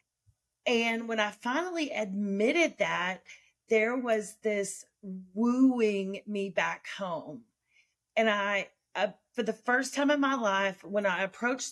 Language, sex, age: English, female, 40-59